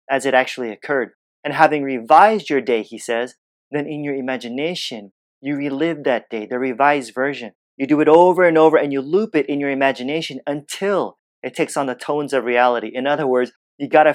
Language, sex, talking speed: English, male, 205 wpm